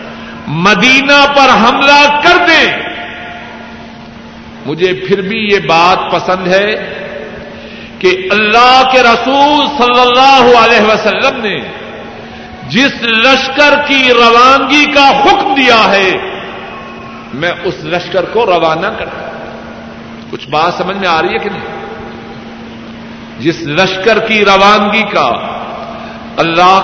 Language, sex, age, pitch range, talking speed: Urdu, male, 60-79, 185-265 Hz, 110 wpm